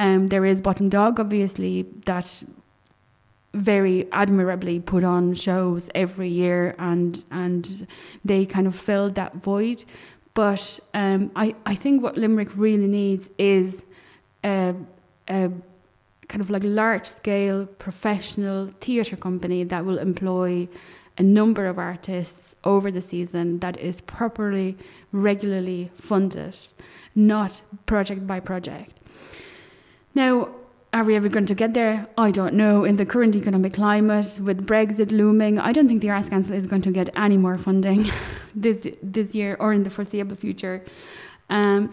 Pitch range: 185-210 Hz